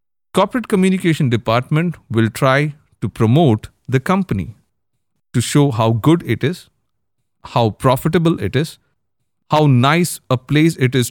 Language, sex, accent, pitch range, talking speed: English, male, Indian, 115-155 Hz, 135 wpm